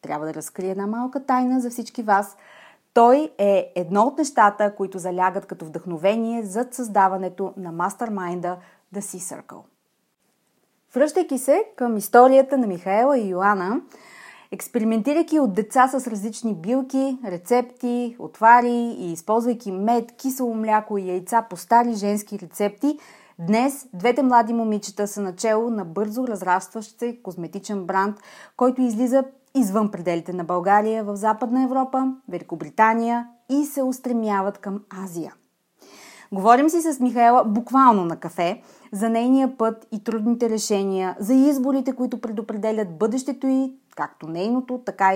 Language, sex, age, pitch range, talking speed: Bulgarian, female, 30-49, 195-250 Hz, 135 wpm